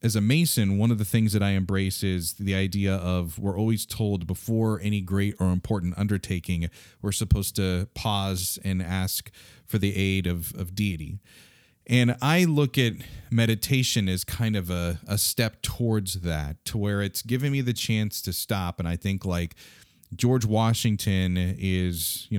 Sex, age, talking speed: male, 30-49, 175 wpm